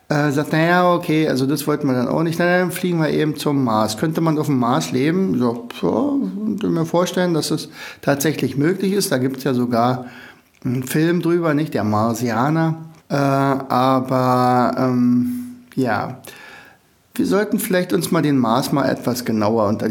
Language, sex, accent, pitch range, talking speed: German, male, German, 125-155 Hz, 180 wpm